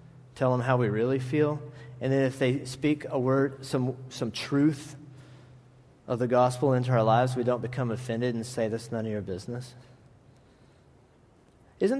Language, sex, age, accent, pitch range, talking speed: English, male, 40-59, American, 125-150 Hz, 170 wpm